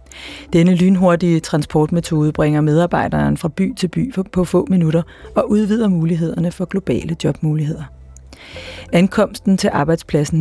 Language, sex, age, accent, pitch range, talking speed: Danish, female, 30-49, native, 155-185 Hz, 120 wpm